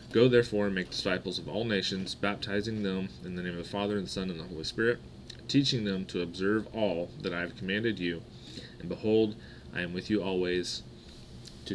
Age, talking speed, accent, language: 30-49, 210 wpm, American, English